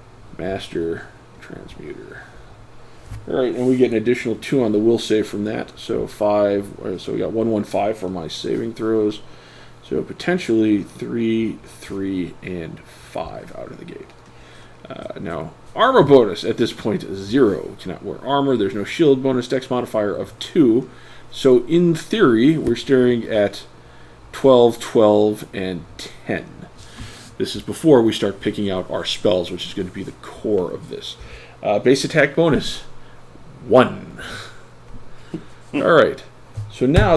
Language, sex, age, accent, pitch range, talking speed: English, male, 40-59, American, 105-140 Hz, 150 wpm